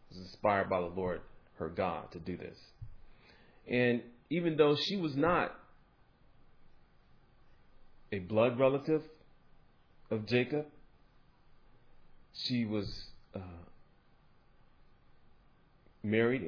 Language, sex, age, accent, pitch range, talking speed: English, male, 40-59, American, 100-130 Hz, 85 wpm